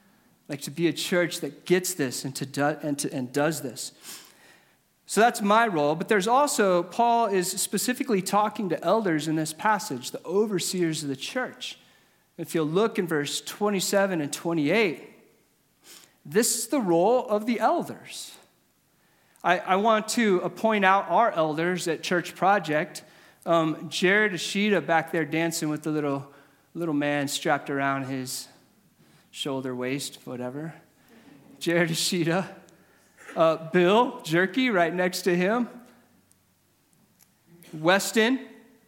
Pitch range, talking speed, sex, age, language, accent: 155-205 Hz, 135 wpm, male, 40-59, English, American